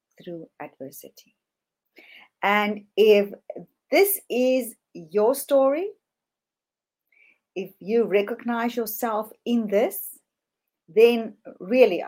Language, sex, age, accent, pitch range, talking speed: English, female, 50-69, Indian, 175-250 Hz, 80 wpm